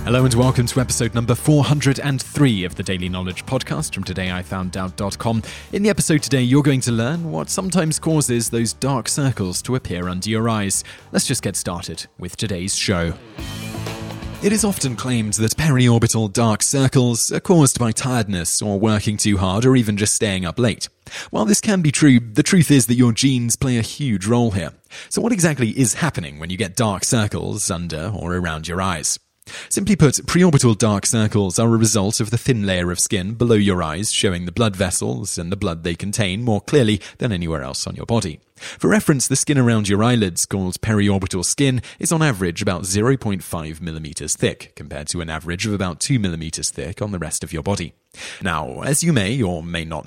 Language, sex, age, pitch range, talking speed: English, male, 30-49, 95-130 Hz, 200 wpm